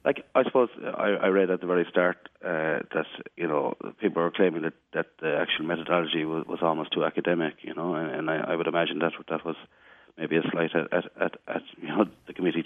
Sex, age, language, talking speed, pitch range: male, 40-59, English, 230 wpm, 85-95 Hz